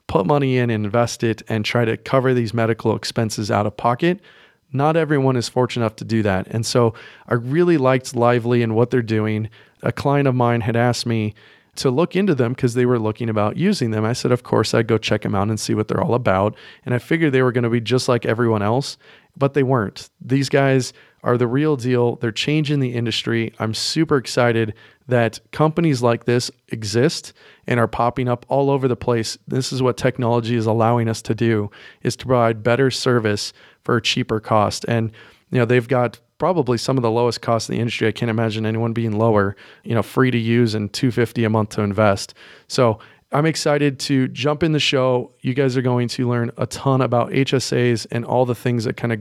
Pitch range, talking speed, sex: 115-130 Hz, 220 wpm, male